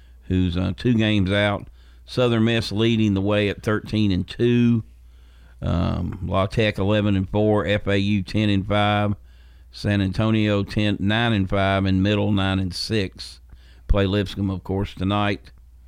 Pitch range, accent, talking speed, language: 85-105 Hz, American, 150 wpm, English